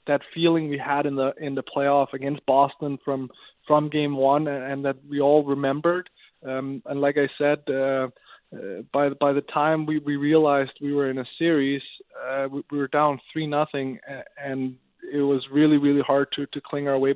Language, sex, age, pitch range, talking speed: English, male, 20-39, 140-155 Hz, 205 wpm